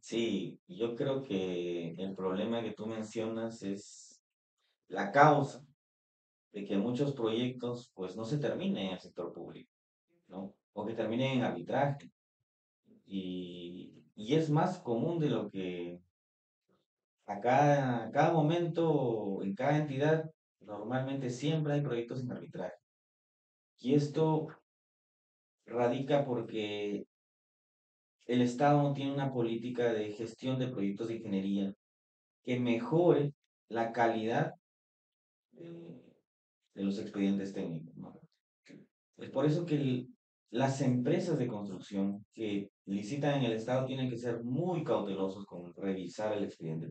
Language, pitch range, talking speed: Spanish, 95-135 Hz, 125 wpm